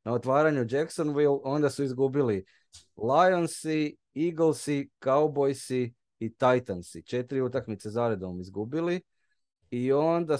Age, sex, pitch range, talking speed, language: 20-39, male, 115-145 Hz, 100 wpm, Croatian